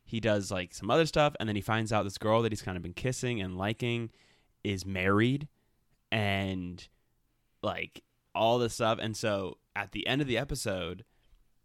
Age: 20-39